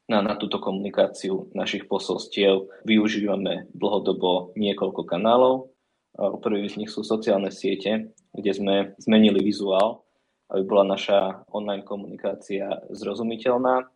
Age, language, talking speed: 20-39, Slovak, 110 wpm